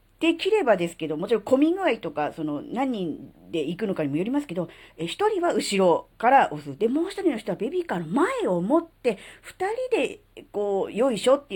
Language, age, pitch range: Japanese, 40-59, 165-275 Hz